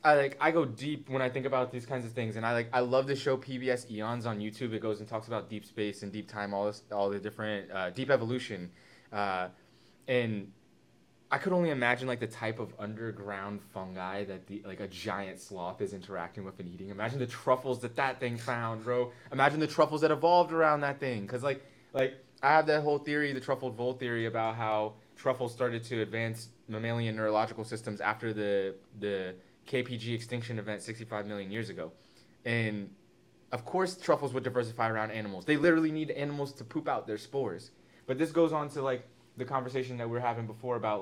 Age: 20-39